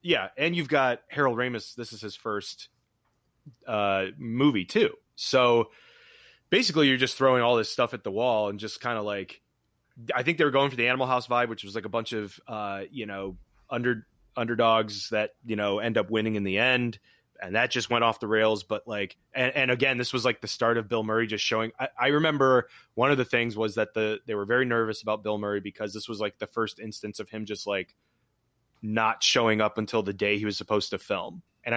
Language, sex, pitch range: English, male, 110-130 Hz